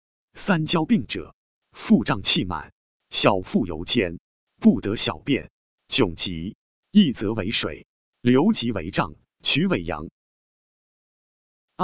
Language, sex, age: Chinese, male, 30-49